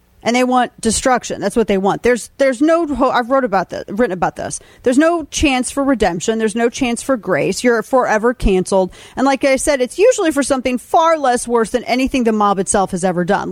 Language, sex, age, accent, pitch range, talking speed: English, female, 40-59, American, 200-255 Hz, 220 wpm